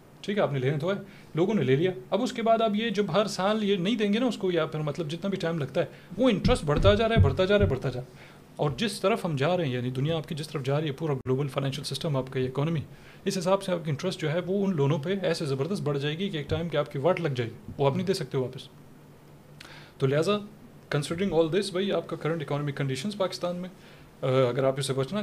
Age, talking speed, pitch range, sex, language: 30-49, 270 wpm, 140-185 Hz, male, Urdu